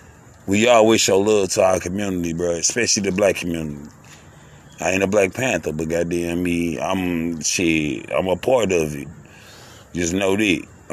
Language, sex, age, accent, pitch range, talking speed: English, male, 30-49, American, 95-135 Hz, 175 wpm